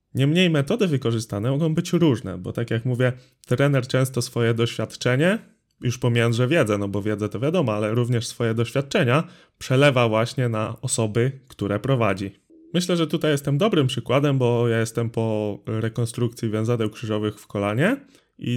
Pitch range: 115-150 Hz